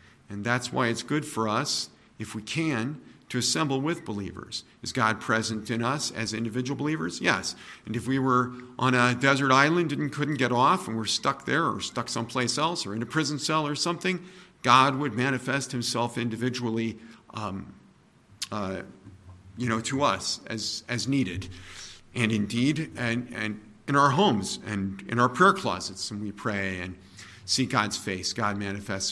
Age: 50-69